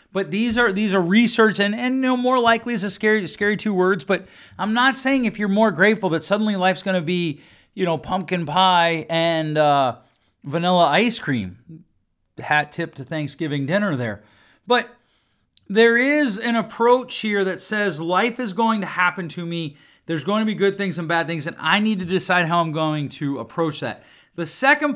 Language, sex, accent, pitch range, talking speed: English, male, American, 170-235 Hz, 205 wpm